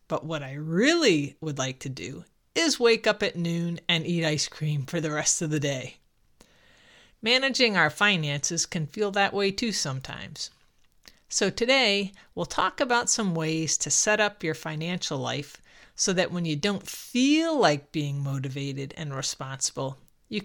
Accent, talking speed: American, 165 wpm